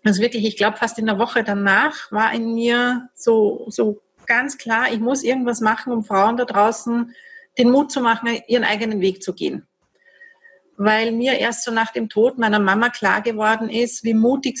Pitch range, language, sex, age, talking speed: 215-265 Hz, German, female, 40-59, 195 wpm